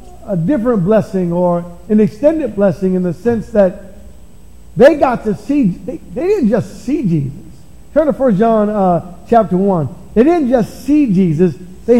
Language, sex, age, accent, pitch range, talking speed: English, male, 50-69, American, 190-230 Hz, 165 wpm